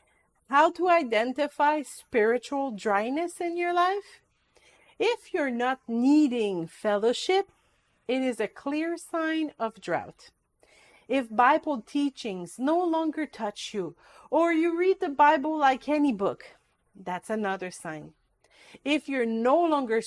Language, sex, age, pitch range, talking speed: English, female, 40-59, 215-315 Hz, 125 wpm